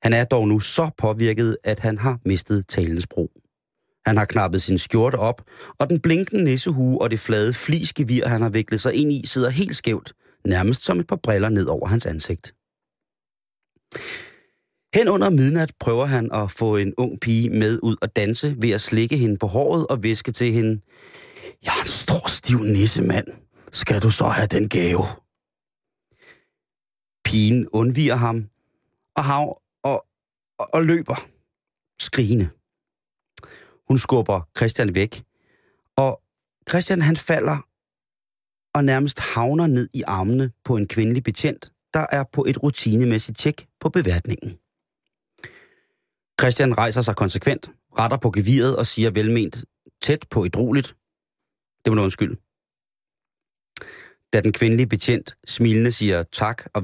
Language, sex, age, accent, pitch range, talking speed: Danish, male, 30-49, native, 110-135 Hz, 145 wpm